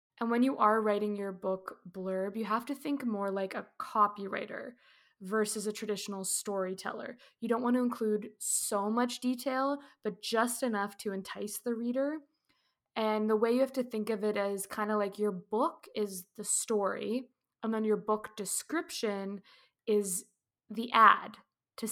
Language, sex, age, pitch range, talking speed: English, female, 20-39, 205-245 Hz, 170 wpm